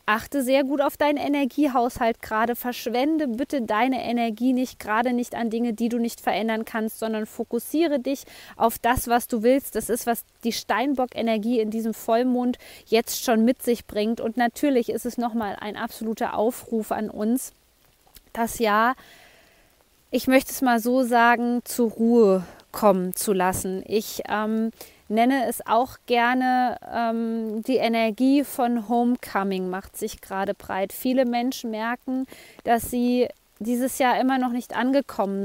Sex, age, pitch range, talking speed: female, 20-39, 220-255 Hz, 155 wpm